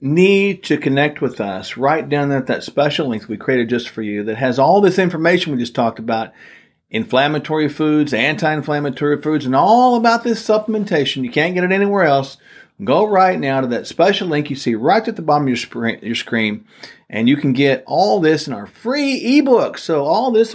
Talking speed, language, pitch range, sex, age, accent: 210 wpm, English, 120-155 Hz, male, 50-69, American